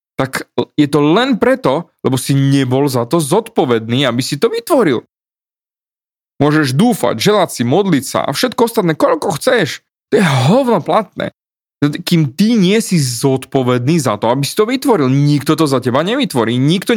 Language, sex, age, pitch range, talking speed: Slovak, male, 30-49, 130-190 Hz, 165 wpm